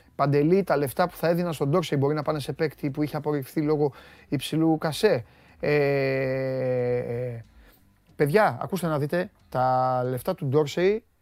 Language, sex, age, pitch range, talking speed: Greek, male, 30-49, 140-210 Hz, 145 wpm